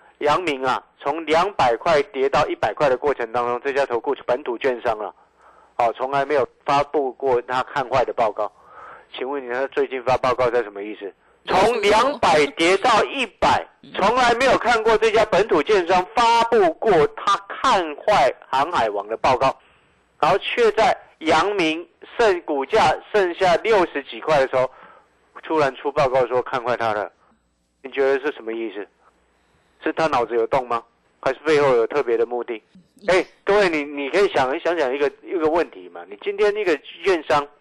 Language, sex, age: Chinese, male, 50-69